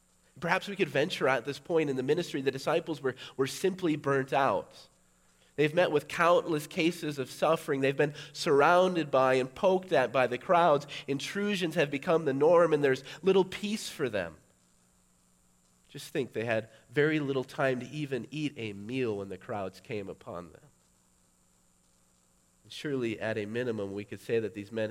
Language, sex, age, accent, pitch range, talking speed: English, male, 30-49, American, 100-140 Hz, 175 wpm